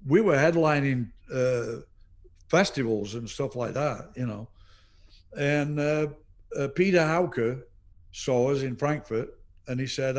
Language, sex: English, male